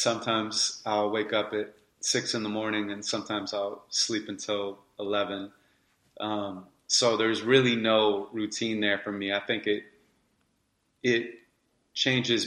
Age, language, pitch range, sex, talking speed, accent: 30-49, English, 100-115 Hz, male, 140 wpm, American